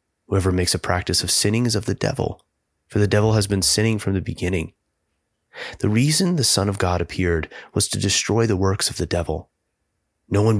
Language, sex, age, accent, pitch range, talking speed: English, male, 30-49, American, 80-105 Hz, 205 wpm